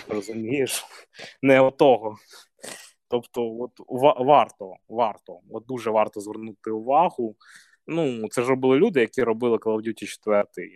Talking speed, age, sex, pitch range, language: 125 wpm, 20-39, male, 115-170 Hz, Ukrainian